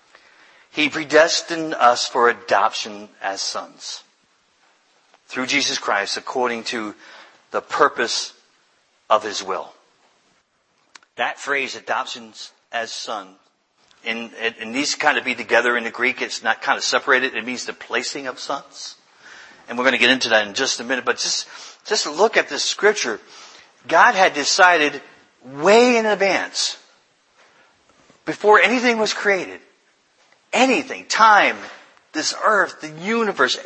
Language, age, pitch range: English, 50-69, 125-190 Hz